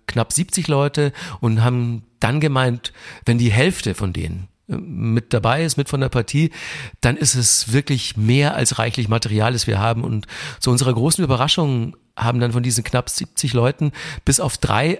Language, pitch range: German, 115-150 Hz